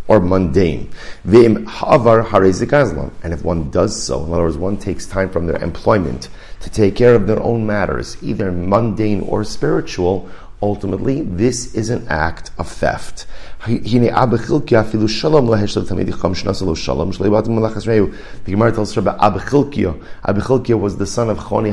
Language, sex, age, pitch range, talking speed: English, male, 40-59, 95-120 Hz, 125 wpm